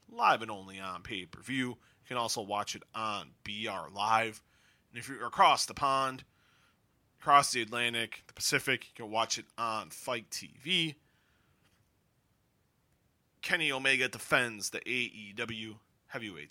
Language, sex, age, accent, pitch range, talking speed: English, male, 30-49, American, 105-135 Hz, 135 wpm